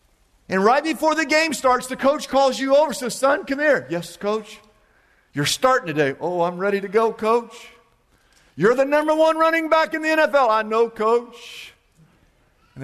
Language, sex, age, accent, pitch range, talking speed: English, male, 50-69, American, 145-220 Hz, 180 wpm